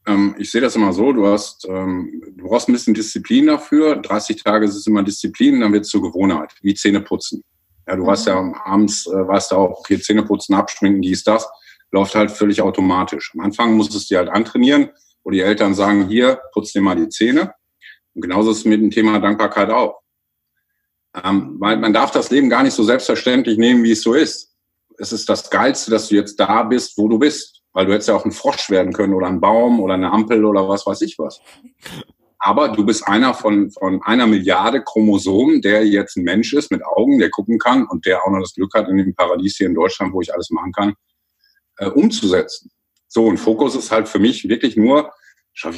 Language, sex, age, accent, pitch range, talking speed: German, male, 50-69, German, 100-145 Hz, 220 wpm